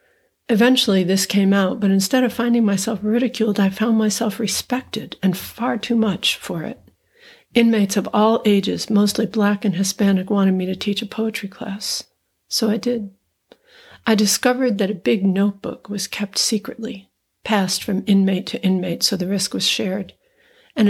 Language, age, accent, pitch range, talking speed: English, 60-79, American, 190-220 Hz, 165 wpm